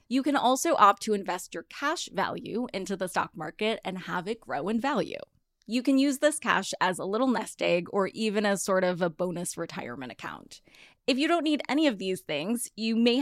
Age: 20-39